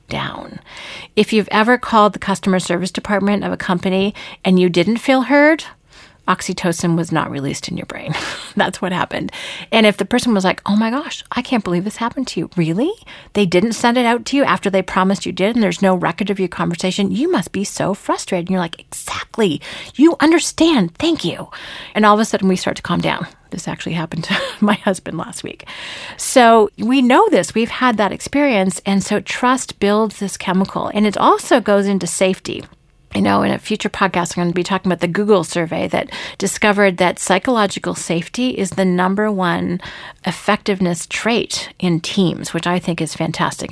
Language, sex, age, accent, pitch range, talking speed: English, female, 40-59, American, 180-225 Hz, 200 wpm